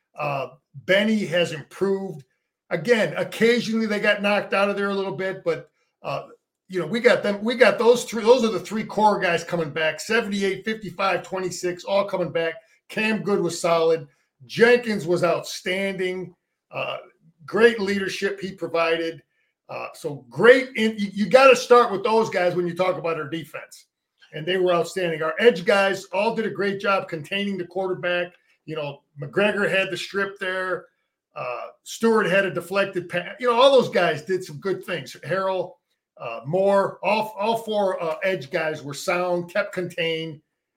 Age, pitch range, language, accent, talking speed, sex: 50-69, 170-215 Hz, English, American, 170 wpm, male